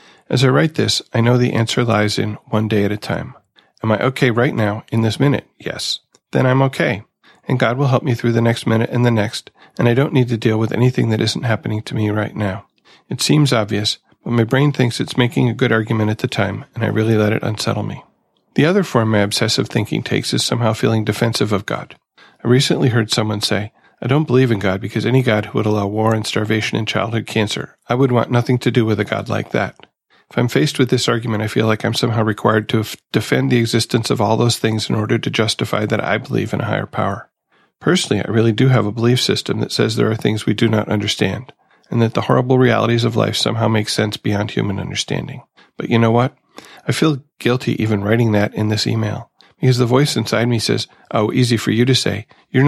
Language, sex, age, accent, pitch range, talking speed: English, male, 40-59, American, 105-125 Hz, 240 wpm